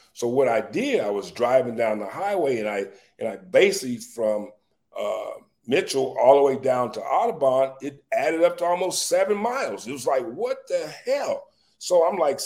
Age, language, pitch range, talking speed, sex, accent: 40-59, English, 110-175 Hz, 195 wpm, male, American